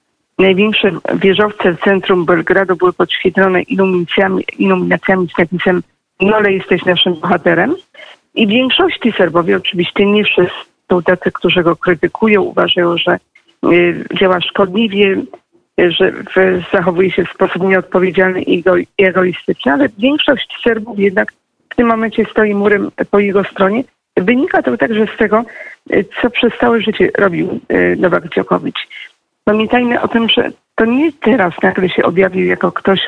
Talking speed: 145 wpm